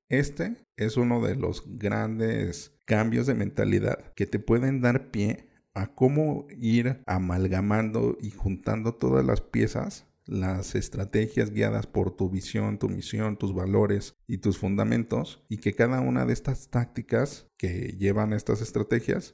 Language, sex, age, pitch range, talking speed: Spanish, male, 50-69, 95-120 Hz, 145 wpm